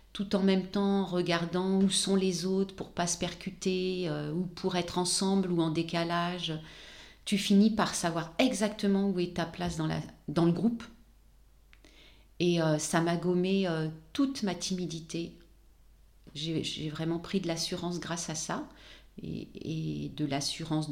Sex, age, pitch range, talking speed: female, 40-59, 150-180 Hz, 170 wpm